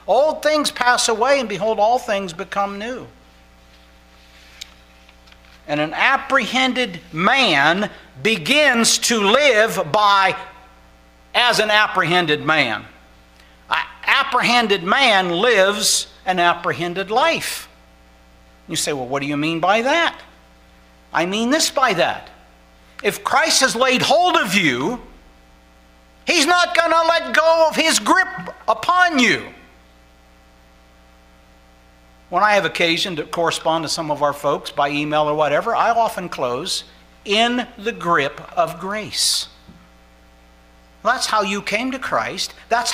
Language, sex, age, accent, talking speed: English, male, 60-79, American, 125 wpm